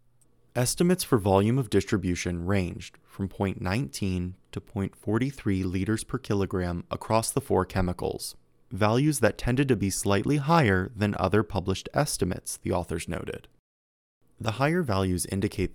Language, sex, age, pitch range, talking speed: English, male, 20-39, 90-120 Hz, 135 wpm